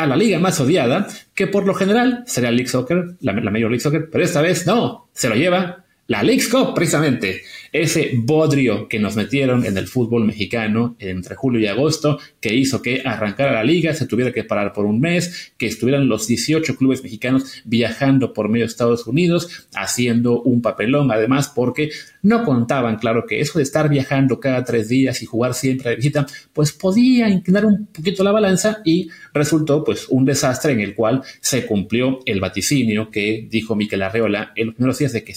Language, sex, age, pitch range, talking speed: English, male, 30-49, 115-155 Hz, 200 wpm